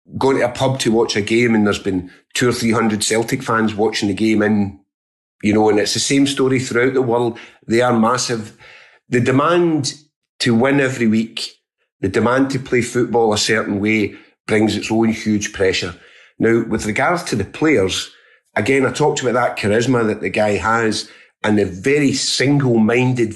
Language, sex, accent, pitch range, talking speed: English, male, British, 105-130 Hz, 190 wpm